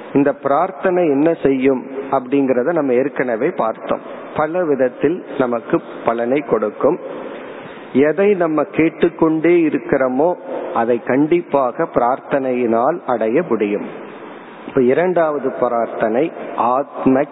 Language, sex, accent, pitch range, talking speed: Tamil, male, native, 135-165 Hz, 60 wpm